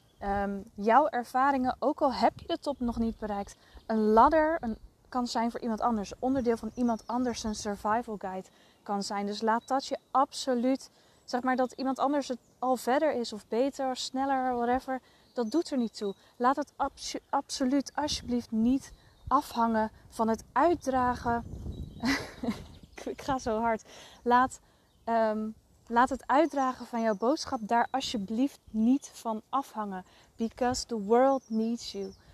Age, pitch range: 20-39, 215-255 Hz